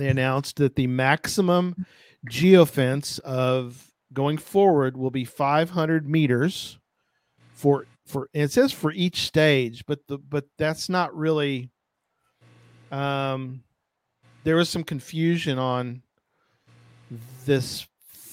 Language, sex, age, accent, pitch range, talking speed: English, male, 40-59, American, 125-155 Hz, 110 wpm